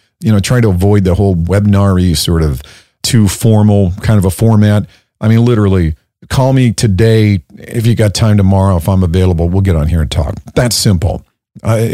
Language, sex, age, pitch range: English, male, 50-69, 95-120 Hz